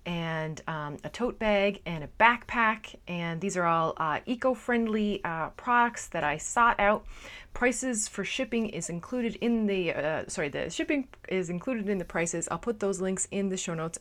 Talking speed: 185 wpm